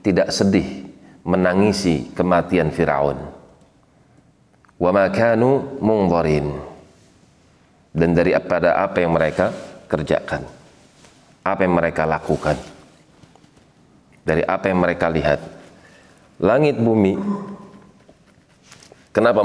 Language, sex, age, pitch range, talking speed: Indonesian, male, 30-49, 85-100 Hz, 75 wpm